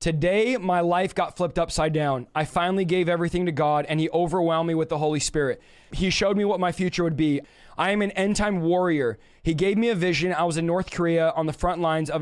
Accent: American